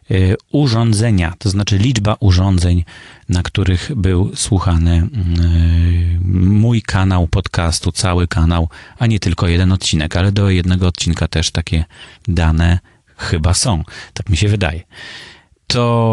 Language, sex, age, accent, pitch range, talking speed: Polish, male, 30-49, native, 95-125 Hz, 125 wpm